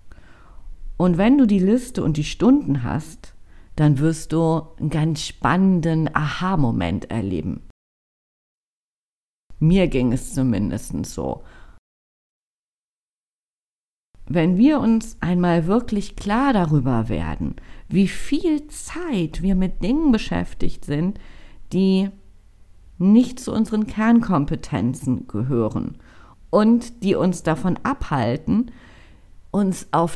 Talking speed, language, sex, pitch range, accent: 100 wpm, German, female, 125-190 Hz, German